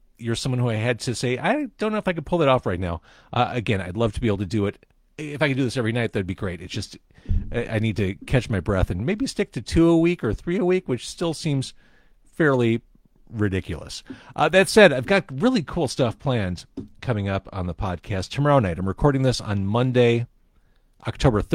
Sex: male